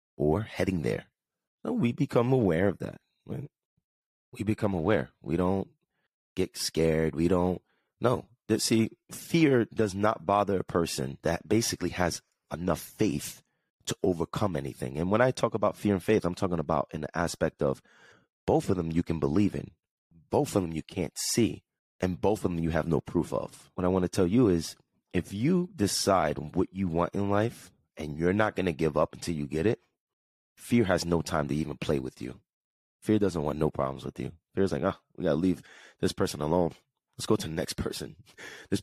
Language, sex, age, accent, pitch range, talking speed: English, male, 30-49, American, 80-105 Hz, 200 wpm